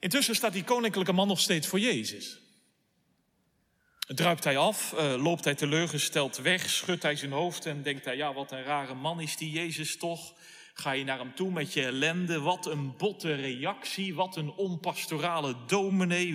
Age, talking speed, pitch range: 40-59, 175 wpm, 160-245 Hz